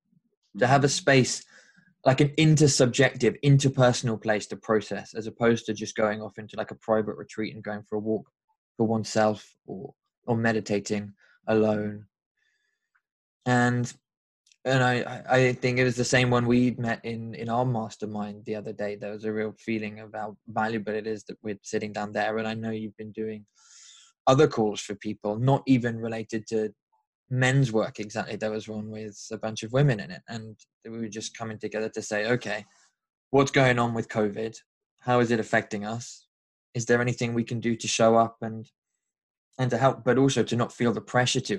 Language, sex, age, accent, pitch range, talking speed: English, male, 20-39, British, 110-125 Hz, 195 wpm